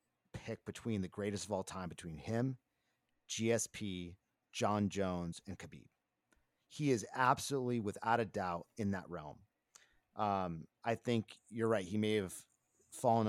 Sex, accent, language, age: male, American, English, 40-59